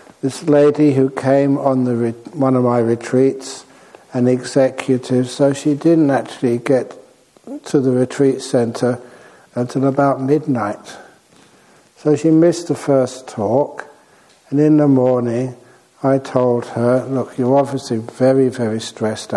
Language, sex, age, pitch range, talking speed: English, male, 60-79, 120-140 Hz, 135 wpm